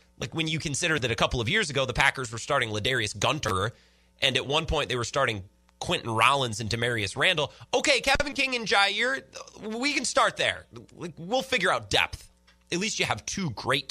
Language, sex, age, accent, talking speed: English, male, 30-49, American, 205 wpm